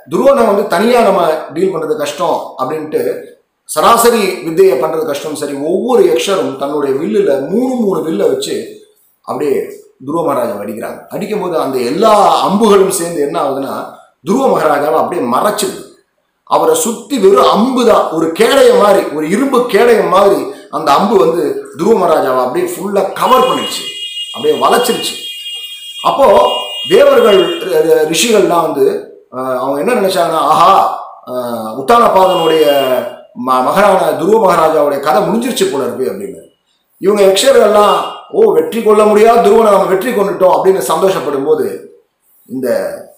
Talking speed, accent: 120 wpm, native